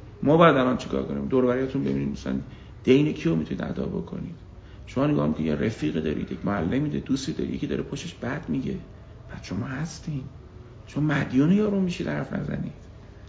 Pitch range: 100-150 Hz